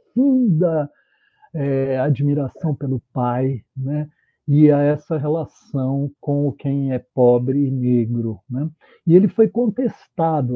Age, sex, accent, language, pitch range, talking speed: 60-79, male, Brazilian, Portuguese, 135-175 Hz, 120 wpm